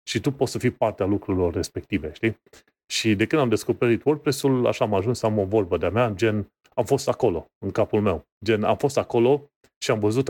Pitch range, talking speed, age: 105-135 Hz, 220 wpm, 30-49